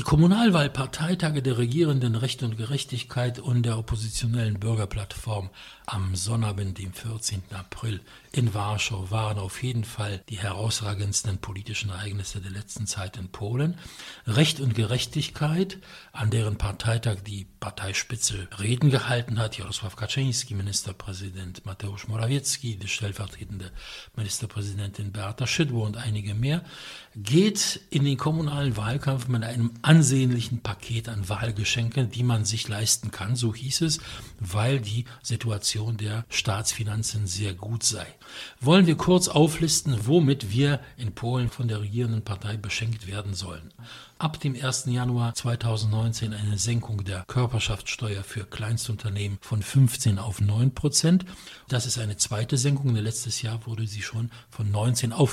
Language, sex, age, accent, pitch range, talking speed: English, male, 60-79, German, 105-130 Hz, 135 wpm